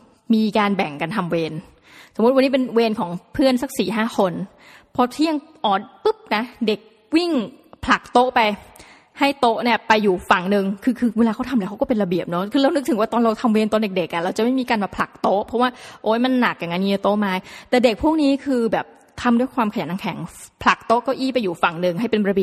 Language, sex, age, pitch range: Thai, female, 20-39, 200-255 Hz